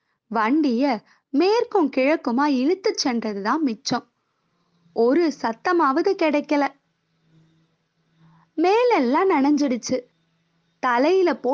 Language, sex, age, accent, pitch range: Tamil, female, 20-39, native, 235-330 Hz